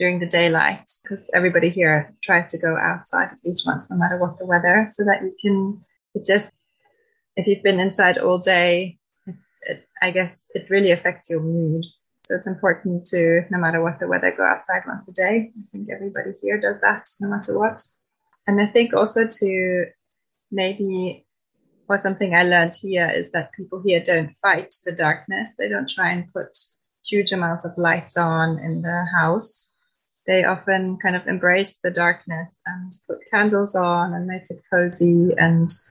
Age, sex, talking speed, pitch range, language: 20-39, female, 185 wpm, 170-195 Hz, English